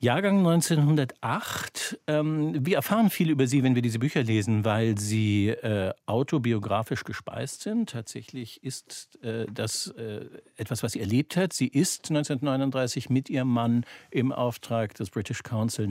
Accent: German